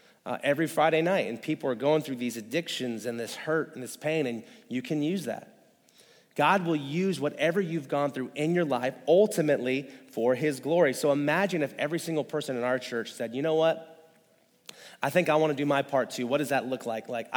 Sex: male